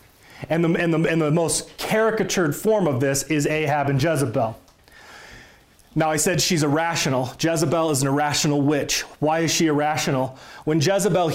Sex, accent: male, American